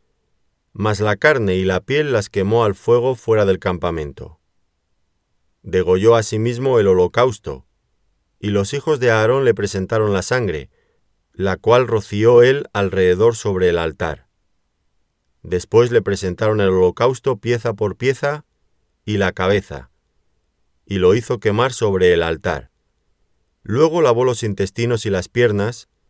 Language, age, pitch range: Spanish, 40-59, 90-115 Hz